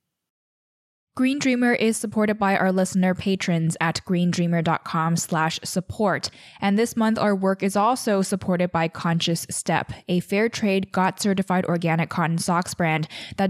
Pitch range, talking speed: 170-205 Hz, 140 wpm